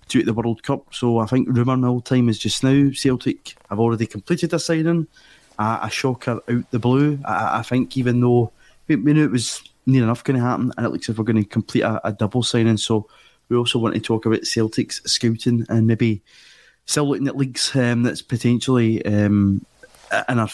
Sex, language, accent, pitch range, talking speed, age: male, English, British, 115-130 Hz, 205 wpm, 20-39